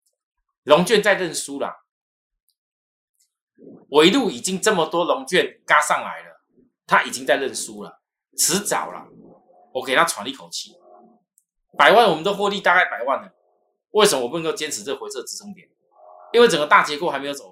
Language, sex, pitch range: Chinese, male, 165-245 Hz